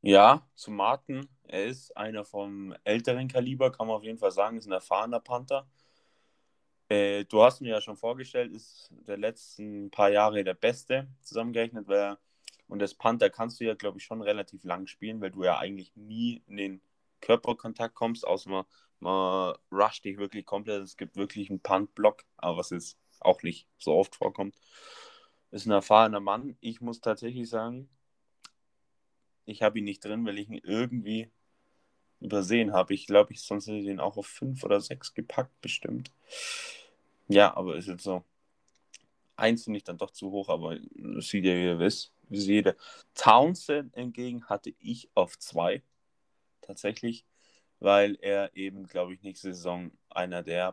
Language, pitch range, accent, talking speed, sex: Danish, 95-115 Hz, German, 175 wpm, male